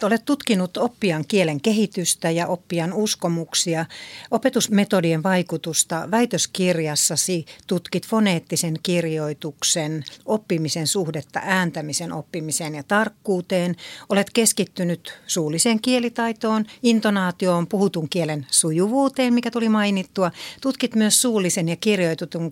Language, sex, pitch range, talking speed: Finnish, female, 160-210 Hz, 95 wpm